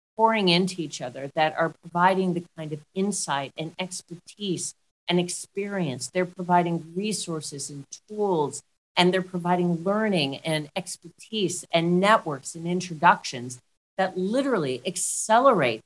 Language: English